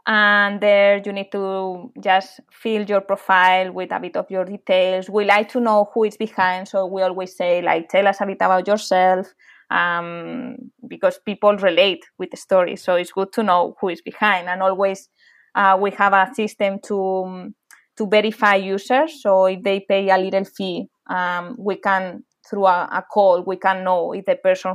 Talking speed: 195 wpm